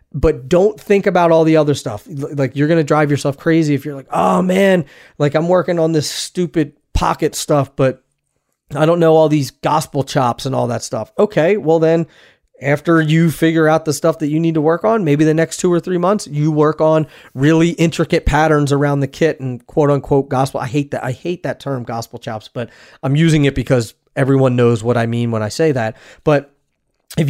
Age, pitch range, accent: 30-49, 135-165 Hz, American